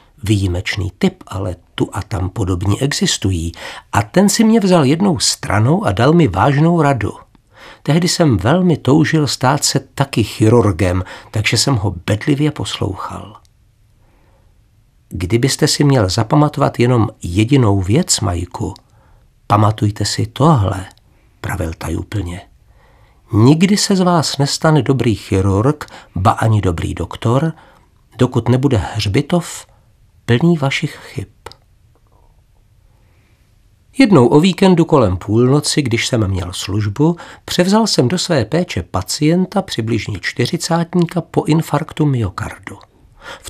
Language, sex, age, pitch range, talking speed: Czech, male, 60-79, 105-155 Hz, 115 wpm